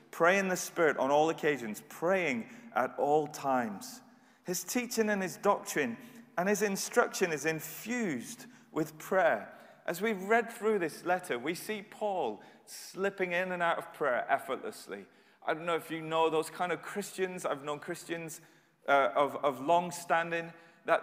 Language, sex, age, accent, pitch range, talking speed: English, male, 30-49, British, 145-200 Hz, 165 wpm